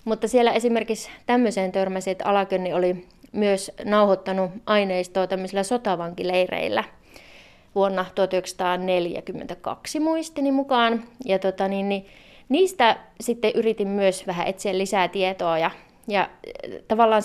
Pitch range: 185-225 Hz